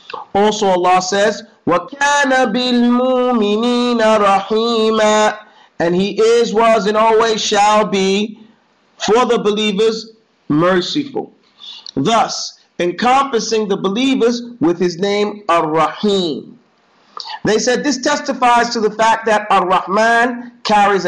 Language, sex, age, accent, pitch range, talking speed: English, male, 50-69, American, 195-240 Hz, 100 wpm